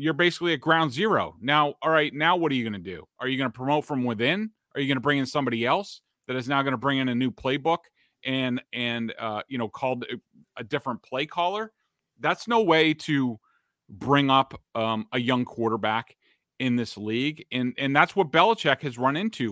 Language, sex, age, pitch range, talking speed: English, male, 30-49, 125-150 Hz, 220 wpm